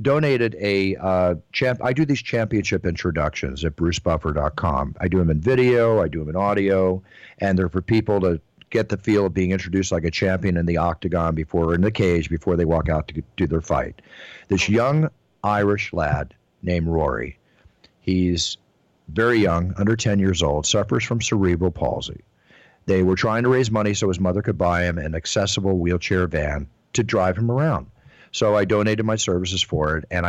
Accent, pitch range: American, 85-110 Hz